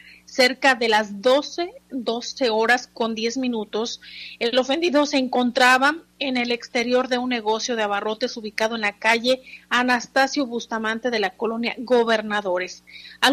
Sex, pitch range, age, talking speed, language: female, 220-265 Hz, 40-59, 145 wpm, Spanish